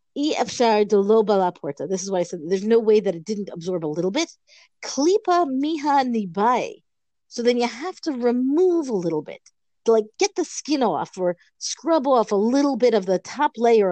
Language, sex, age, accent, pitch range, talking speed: English, female, 50-69, American, 195-265 Hz, 170 wpm